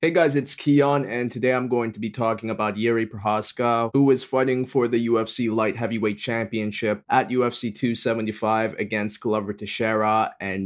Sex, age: male, 20-39